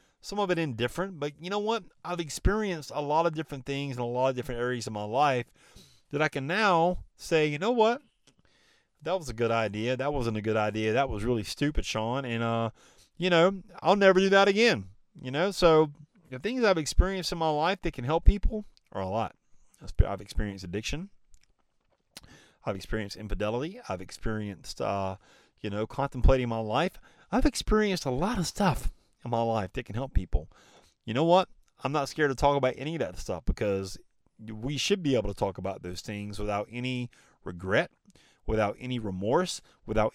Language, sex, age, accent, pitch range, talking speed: English, male, 30-49, American, 110-160 Hz, 195 wpm